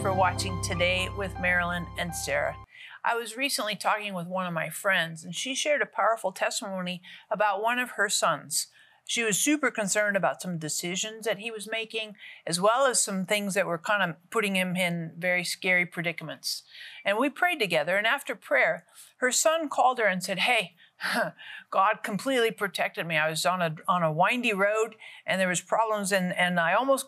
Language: English